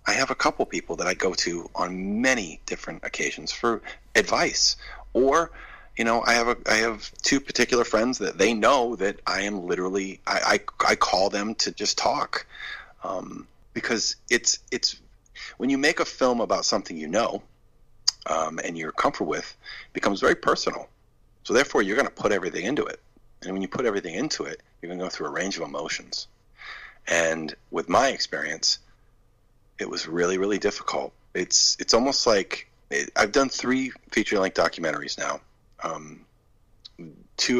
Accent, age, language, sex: American, 40-59, English, male